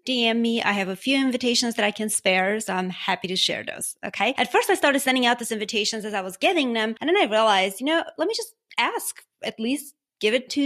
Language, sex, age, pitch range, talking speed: English, female, 30-49, 205-275 Hz, 260 wpm